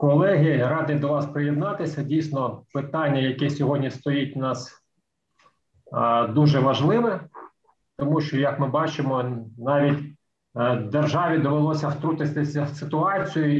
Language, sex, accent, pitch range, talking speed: Ukrainian, male, native, 130-150 Hz, 110 wpm